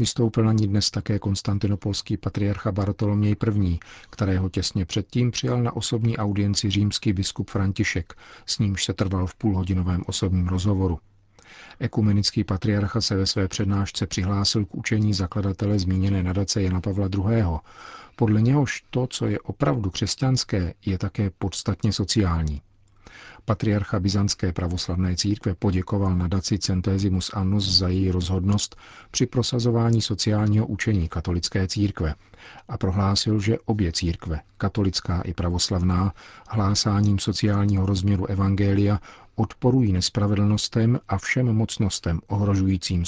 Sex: male